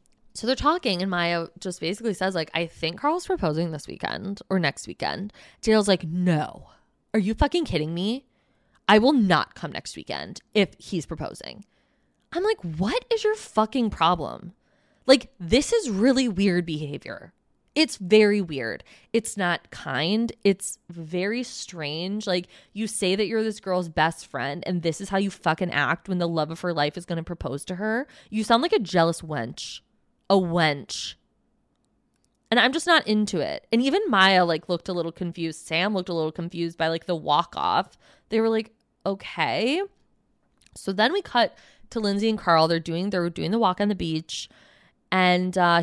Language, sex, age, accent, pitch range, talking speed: English, female, 20-39, American, 170-225 Hz, 180 wpm